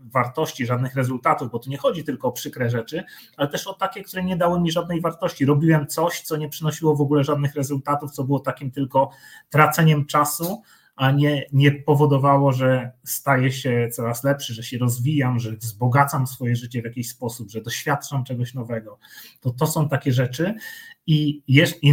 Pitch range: 125-150 Hz